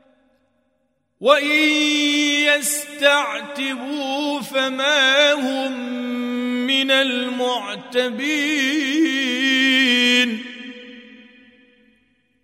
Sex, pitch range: male, 245-285 Hz